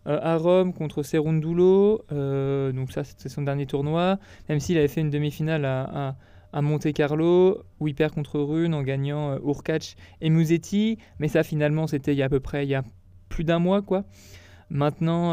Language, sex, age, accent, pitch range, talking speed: French, male, 20-39, French, 140-175 Hz, 190 wpm